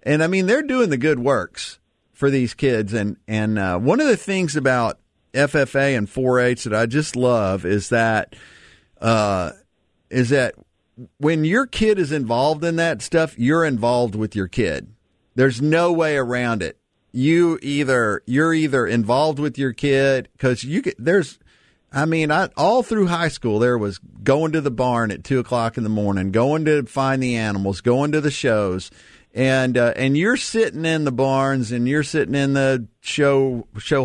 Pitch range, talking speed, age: 115-155 Hz, 185 wpm, 50-69